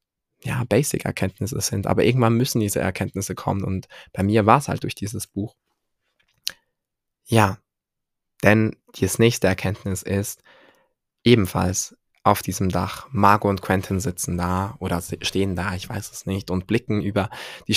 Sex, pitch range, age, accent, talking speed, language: male, 95-110 Hz, 20-39, German, 150 wpm, German